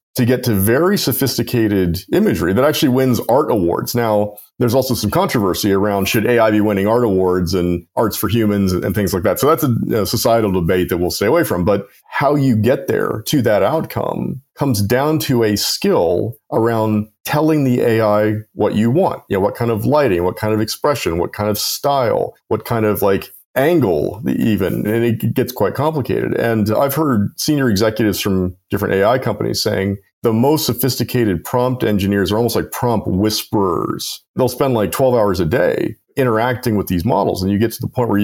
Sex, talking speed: male, 200 wpm